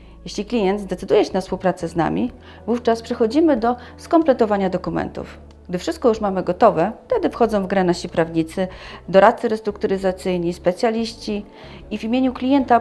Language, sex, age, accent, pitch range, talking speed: Polish, female, 40-59, native, 175-230 Hz, 145 wpm